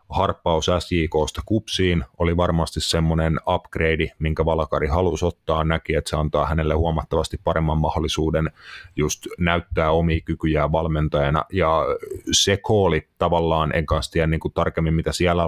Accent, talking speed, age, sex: native, 135 wpm, 30-49, male